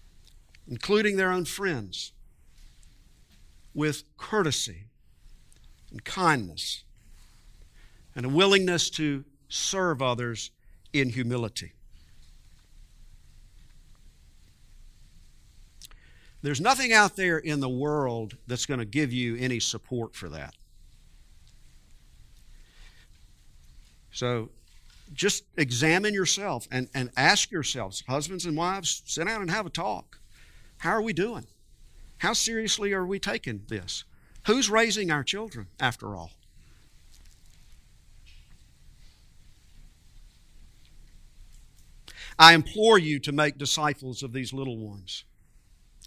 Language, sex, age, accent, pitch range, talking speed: English, male, 50-69, American, 110-185 Hz, 100 wpm